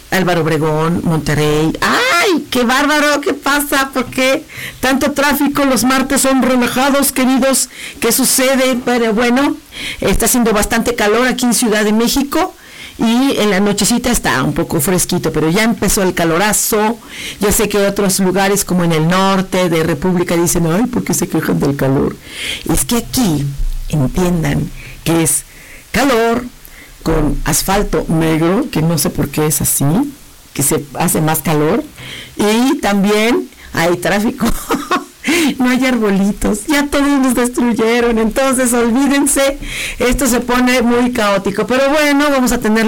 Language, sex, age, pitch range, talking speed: Spanish, female, 50-69, 180-265 Hz, 150 wpm